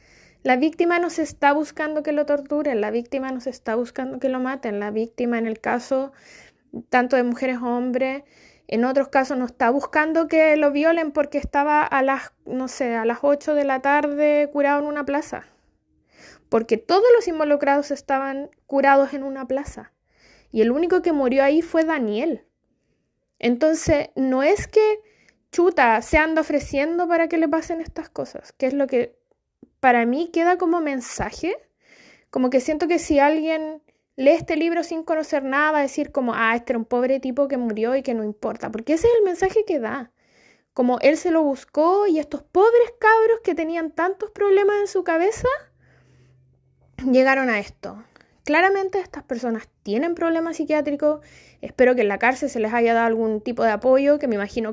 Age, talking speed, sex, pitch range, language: 20-39, 185 wpm, female, 250-320 Hz, Spanish